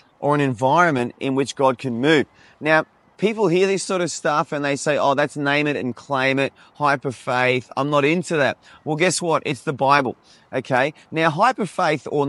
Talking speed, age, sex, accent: 195 wpm, 30-49, male, Australian